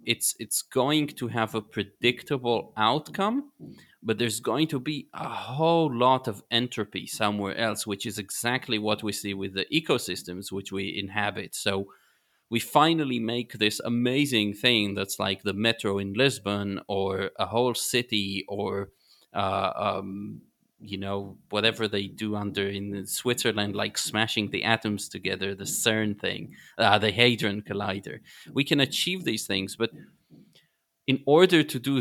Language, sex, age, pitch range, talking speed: English, male, 30-49, 100-125 Hz, 155 wpm